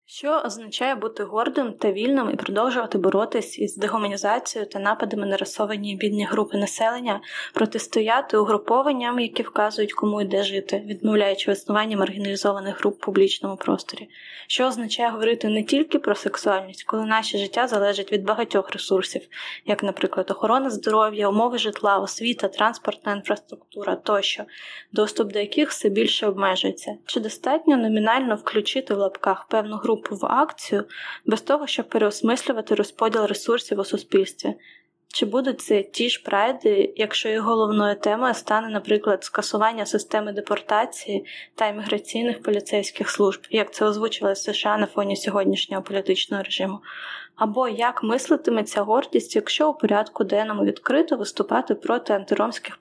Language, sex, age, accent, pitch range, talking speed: Ukrainian, female, 10-29, native, 205-235 Hz, 135 wpm